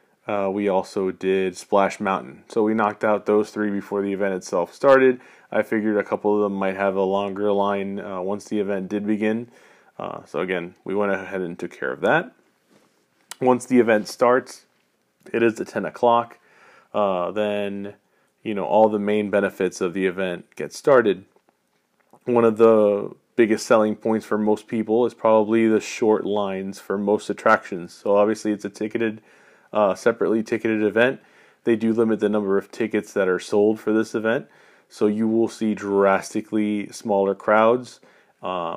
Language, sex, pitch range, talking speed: English, male, 100-110 Hz, 175 wpm